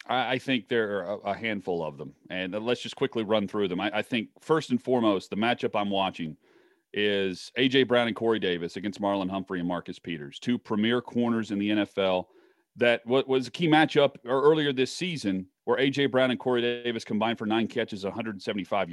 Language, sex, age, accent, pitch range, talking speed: English, male, 40-59, American, 105-130 Hz, 195 wpm